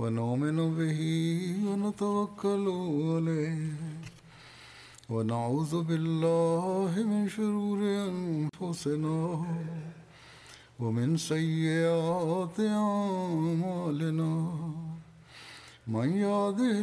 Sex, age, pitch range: male, 60-79, 155-200 Hz